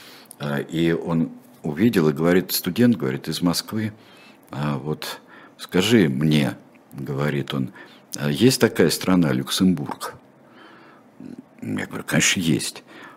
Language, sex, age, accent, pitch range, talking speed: Russian, male, 50-69, native, 75-100 Hz, 110 wpm